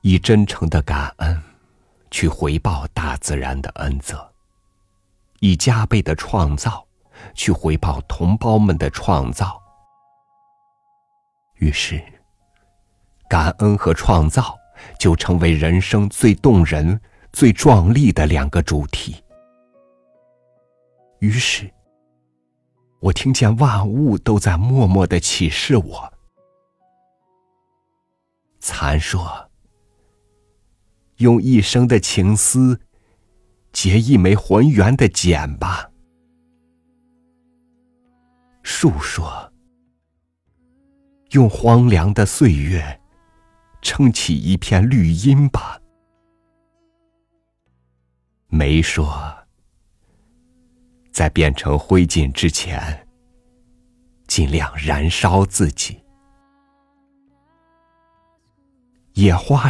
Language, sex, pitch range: Chinese, male, 80-120 Hz